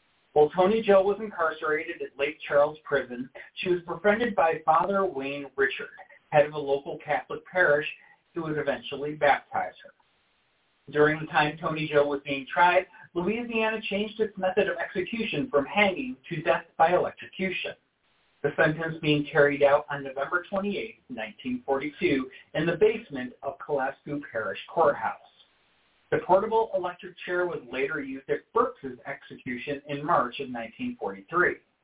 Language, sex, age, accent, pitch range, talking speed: English, male, 40-59, American, 145-195 Hz, 145 wpm